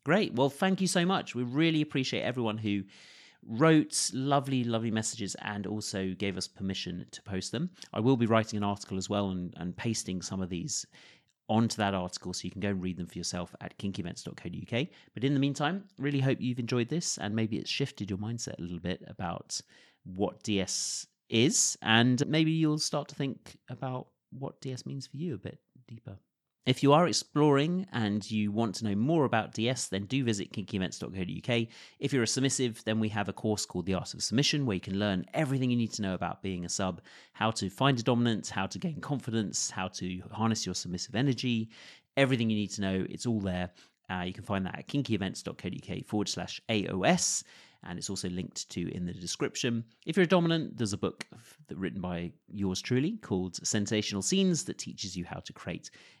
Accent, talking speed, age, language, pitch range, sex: British, 205 wpm, 30-49, English, 95-135 Hz, male